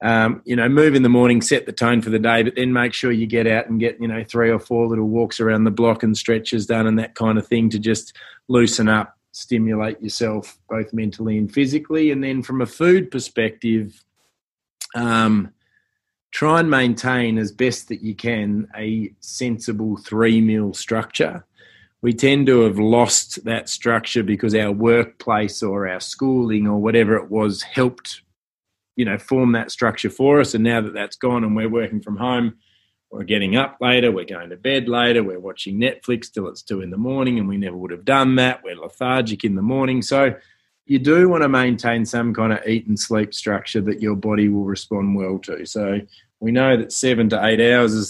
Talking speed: 205 wpm